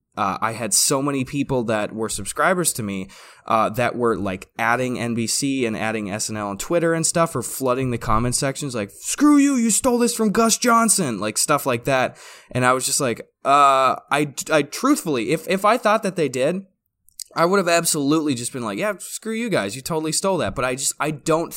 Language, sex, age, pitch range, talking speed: English, male, 20-39, 110-160 Hz, 215 wpm